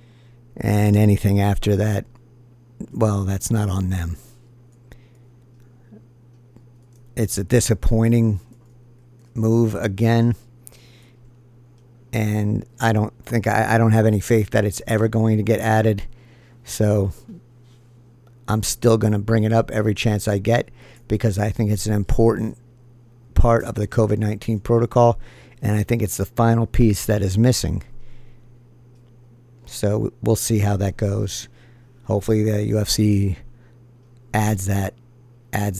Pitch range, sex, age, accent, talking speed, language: 105-120 Hz, male, 50-69, American, 125 wpm, English